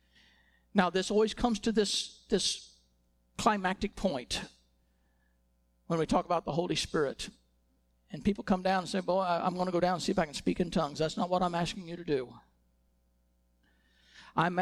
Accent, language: American, English